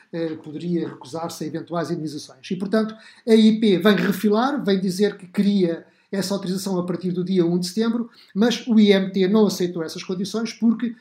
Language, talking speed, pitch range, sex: Portuguese, 175 wpm, 175-215 Hz, male